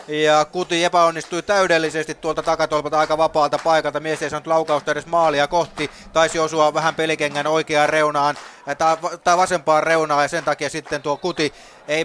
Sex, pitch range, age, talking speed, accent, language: male, 150-165 Hz, 30-49, 160 wpm, native, Finnish